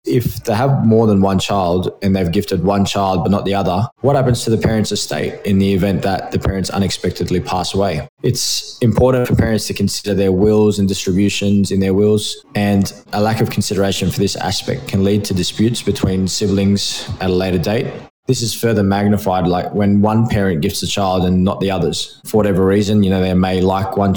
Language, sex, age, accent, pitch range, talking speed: English, male, 20-39, Australian, 95-105 Hz, 215 wpm